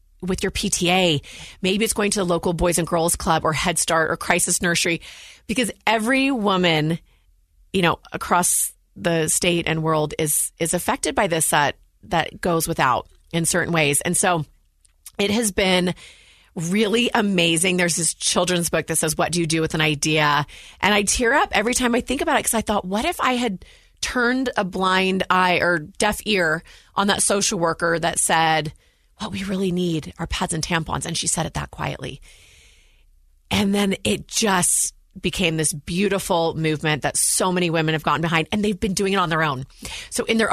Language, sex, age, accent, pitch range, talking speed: English, female, 30-49, American, 160-200 Hz, 195 wpm